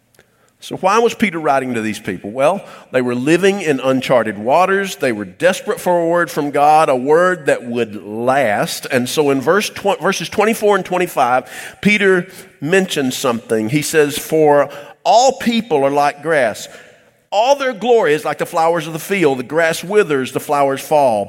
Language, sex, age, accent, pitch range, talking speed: English, male, 50-69, American, 130-190 Hz, 175 wpm